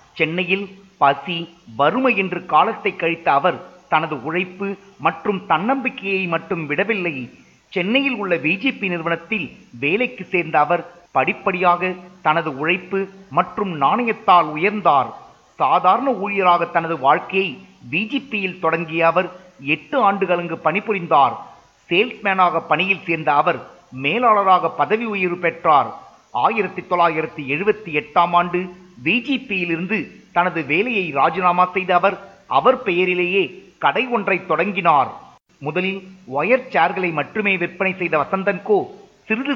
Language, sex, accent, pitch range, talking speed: Tamil, male, native, 165-200 Hz, 95 wpm